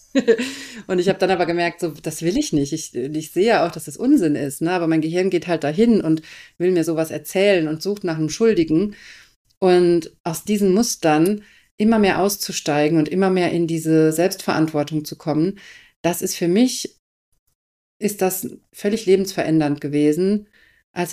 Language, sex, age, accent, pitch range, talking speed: German, female, 40-59, German, 160-190 Hz, 175 wpm